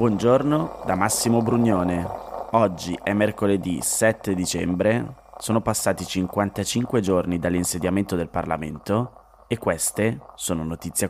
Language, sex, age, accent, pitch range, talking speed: Italian, male, 20-39, native, 90-115 Hz, 110 wpm